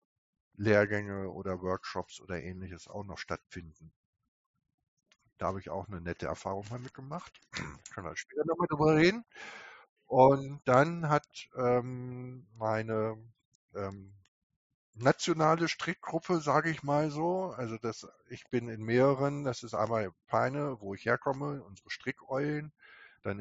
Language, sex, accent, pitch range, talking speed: German, male, German, 100-130 Hz, 140 wpm